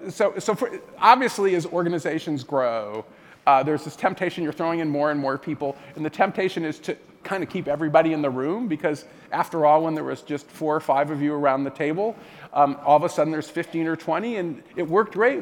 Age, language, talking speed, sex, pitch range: 40-59, English, 225 wpm, male, 150-185 Hz